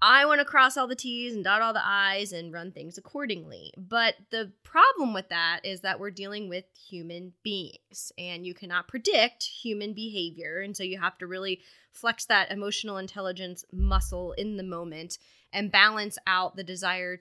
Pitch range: 175-215 Hz